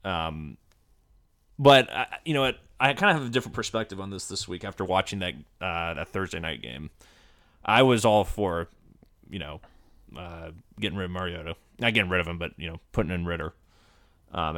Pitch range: 85-110 Hz